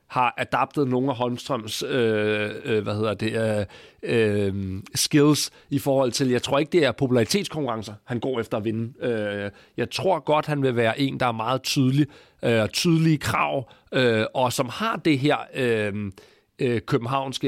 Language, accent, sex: Danish, native, male